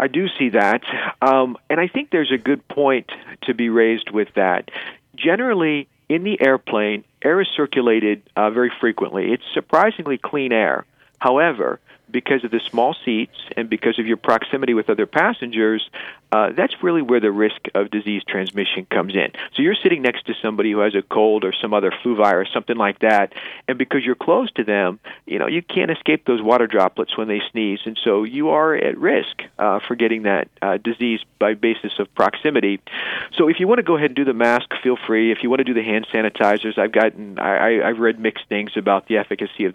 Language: English